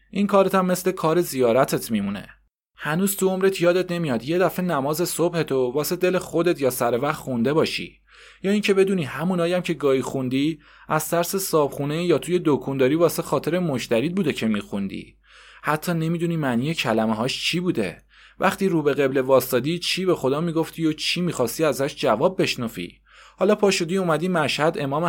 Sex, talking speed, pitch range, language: male, 165 wpm, 135-175 Hz, Persian